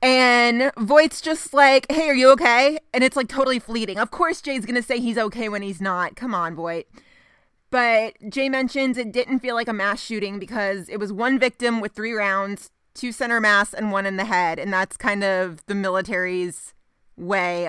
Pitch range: 200-250 Hz